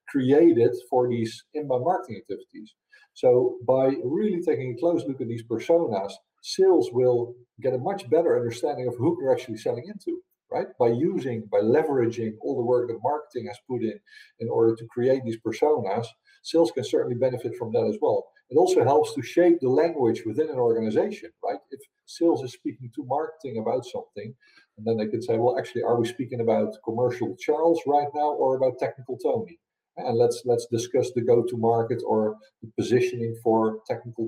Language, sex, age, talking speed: Finnish, male, 50-69, 185 wpm